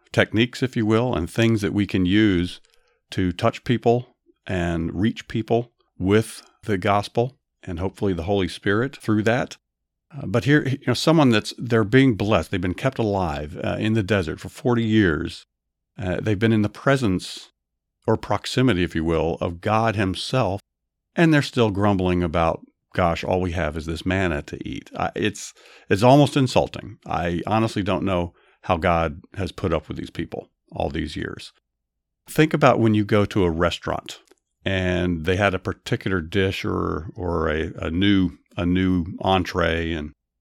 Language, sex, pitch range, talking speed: English, male, 90-115 Hz, 175 wpm